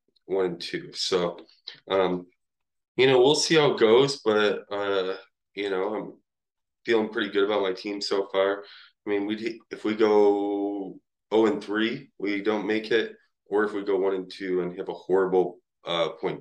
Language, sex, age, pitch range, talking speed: English, male, 20-39, 95-110 Hz, 185 wpm